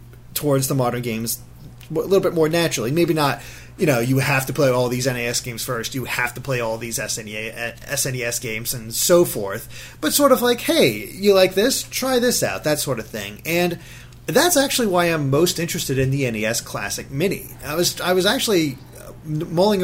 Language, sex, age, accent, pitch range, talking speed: English, male, 30-49, American, 125-170 Hz, 200 wpm